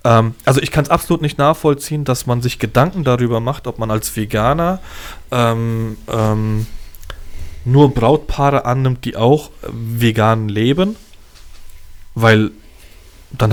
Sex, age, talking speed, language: male, 20-39, 125 wpm, German